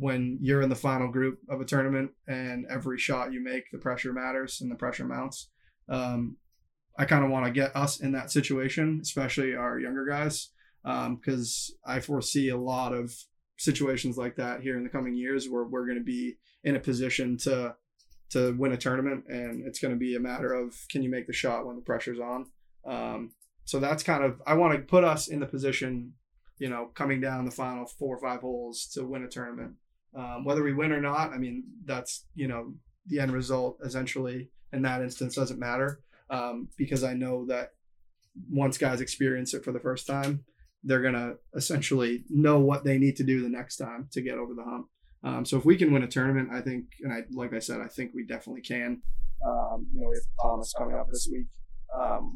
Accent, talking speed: American, 220 wpm